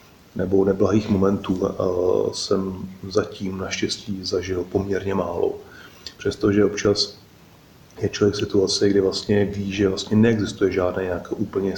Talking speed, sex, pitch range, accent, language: 120 wpm, male, 95-100 Hz, native, Czech